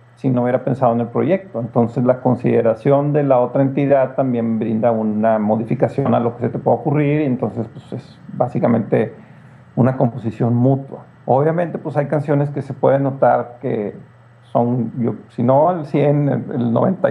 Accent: Mexican